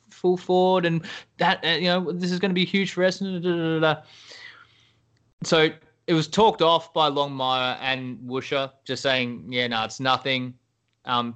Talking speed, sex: 185 wpm, male